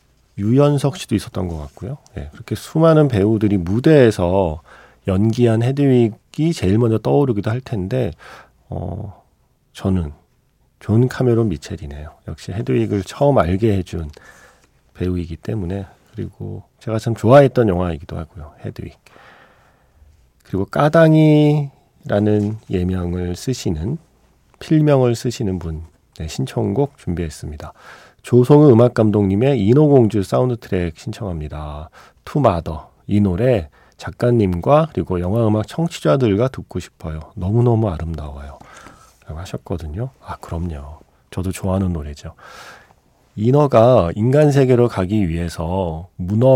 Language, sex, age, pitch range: Korean, male, 40-59, 90-125 Hz